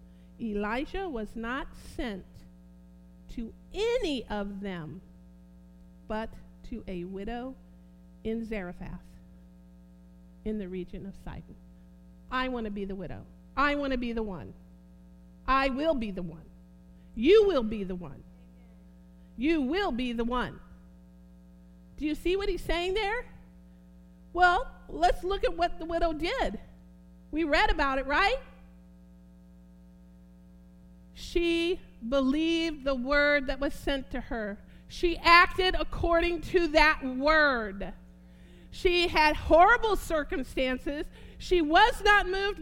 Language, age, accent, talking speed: English, 50-69, American, 125 wpm